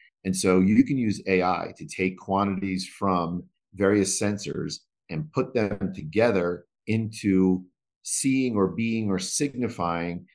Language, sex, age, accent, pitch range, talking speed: English, male, 50-69, American, 85-105 Hz, 130 wpm